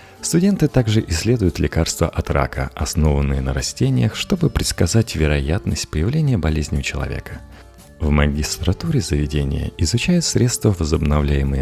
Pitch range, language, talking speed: 75-110 Hz, Russian, 115 wpm